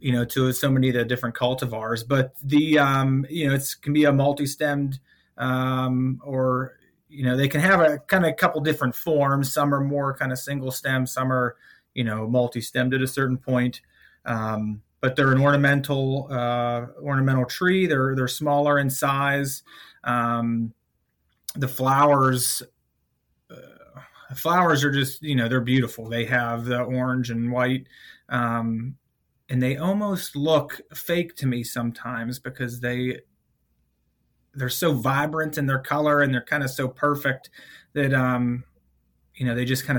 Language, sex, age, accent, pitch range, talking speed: English, male, 30-49, American, 125-145 Hz, 165 wpm